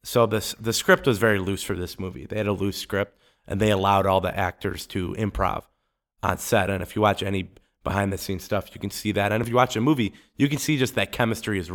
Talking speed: 250 wpm